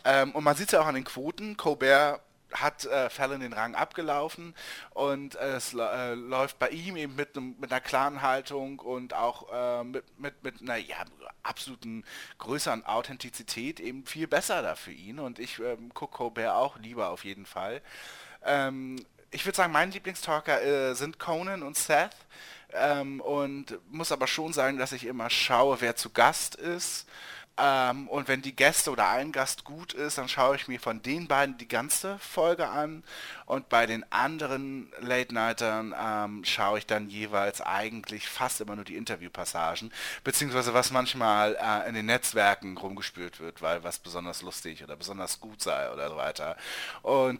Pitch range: 110-145 Hz